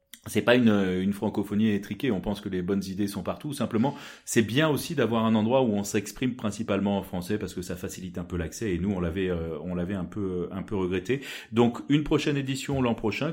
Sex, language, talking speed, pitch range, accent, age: male, French, 235 wpm, 95-125 Hz, French, 30-49